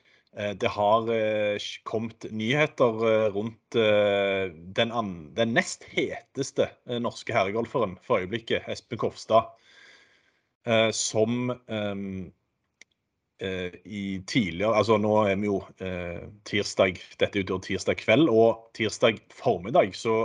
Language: English